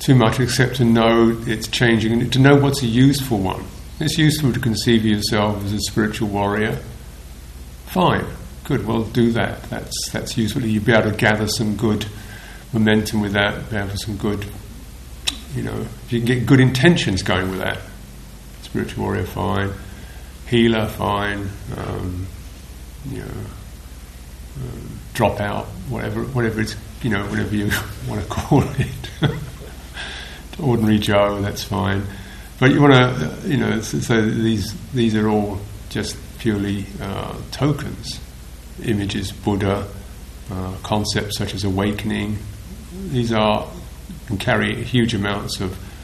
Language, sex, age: English, male, 50-69